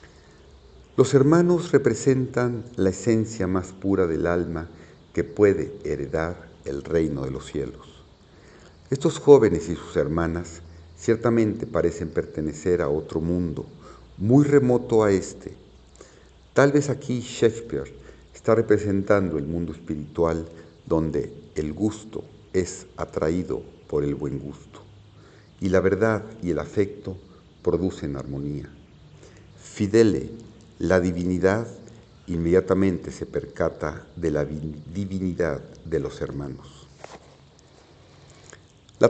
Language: Spanish